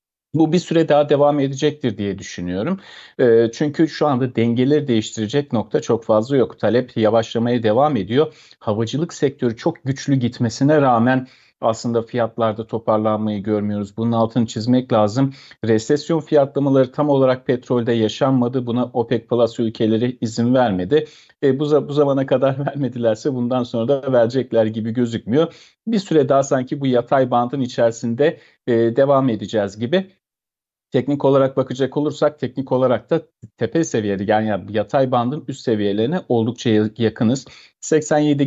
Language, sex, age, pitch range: Turkish, male, 40-59, 115-140 Hz